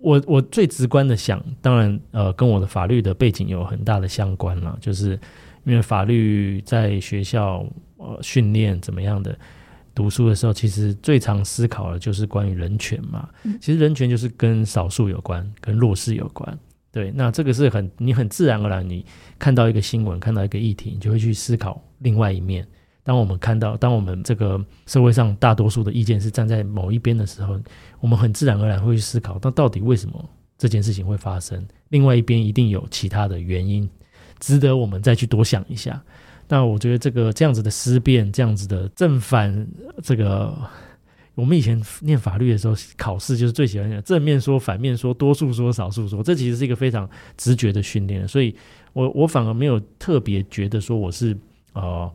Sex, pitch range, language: male, 100-125 Hz, Chinese